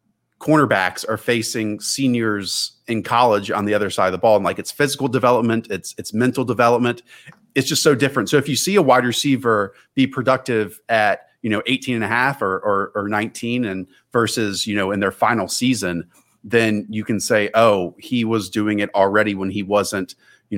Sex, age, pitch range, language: male, 30-49, 105-125 Hz, English